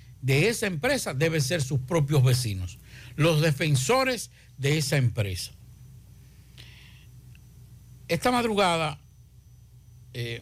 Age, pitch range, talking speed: 60-79, 120-170 Hz, 90 wpm